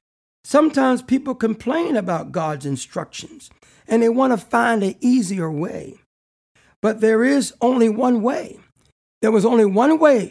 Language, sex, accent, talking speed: English, male, American, 145 wpm